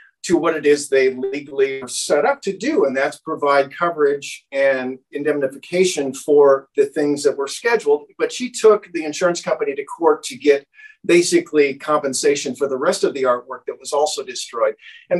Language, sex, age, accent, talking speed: English, male, 50-69, American, 180 wpm